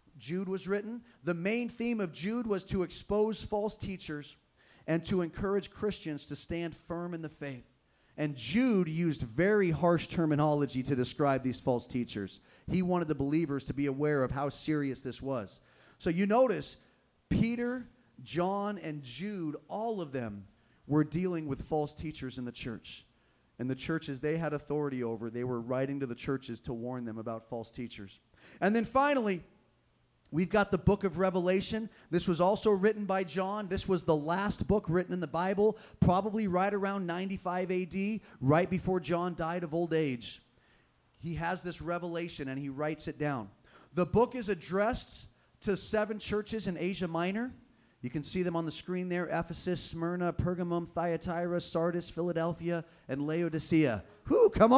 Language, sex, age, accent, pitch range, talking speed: English, male, 30-49, American, 140-190 Hz, 170 wpm